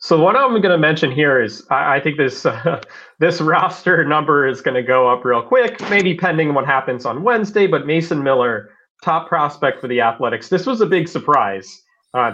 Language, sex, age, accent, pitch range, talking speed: English, male, 30-49, American, 135-180 Hz, 200 wpm